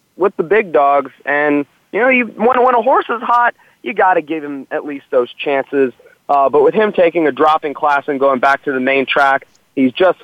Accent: American